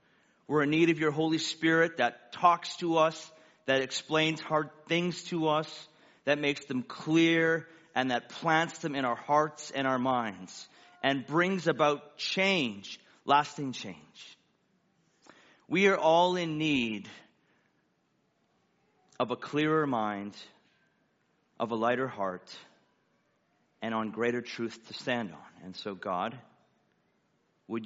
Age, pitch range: 40-59, 115-160 Hz